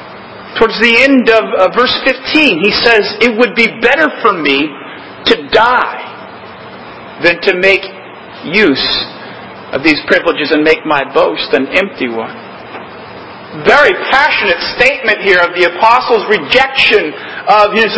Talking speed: 135 wpm